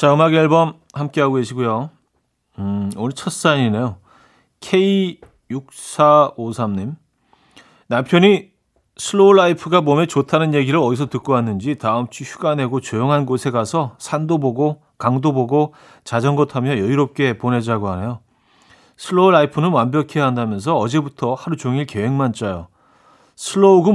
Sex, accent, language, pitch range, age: male, native, Korean, 115-150 Hz, 40-59